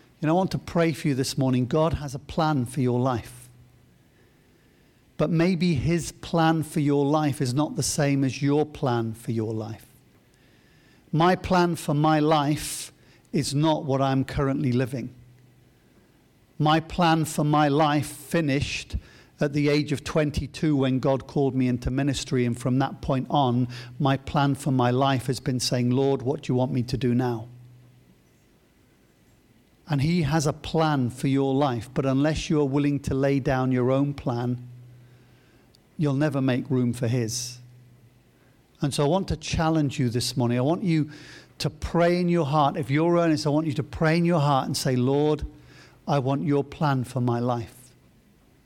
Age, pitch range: 50-69, 125-155 Hz